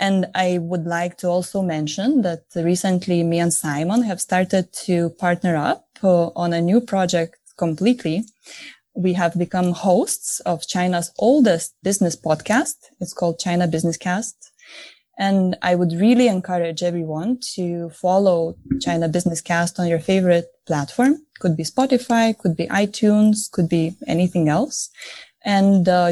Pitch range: 170-200 Hz